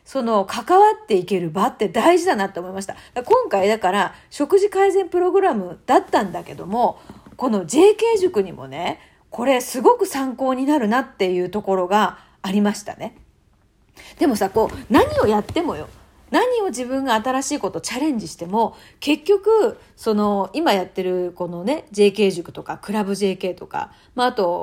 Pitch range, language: 200-330 Hz, Japanese